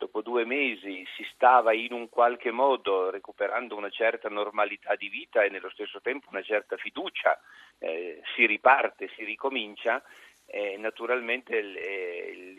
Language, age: Italian, 40-59